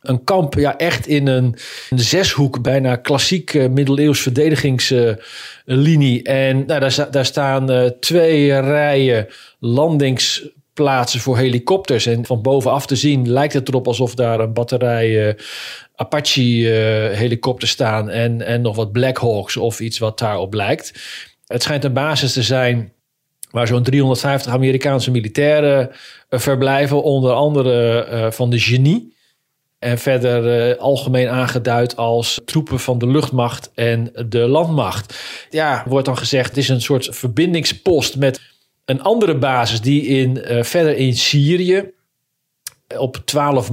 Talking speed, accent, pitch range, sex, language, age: 145 wpm, Dutch, 120-140 Hz, male, Dutch, 40-59